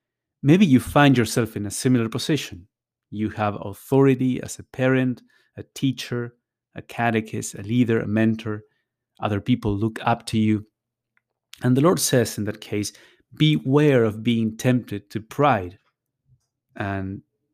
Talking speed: 145 wpm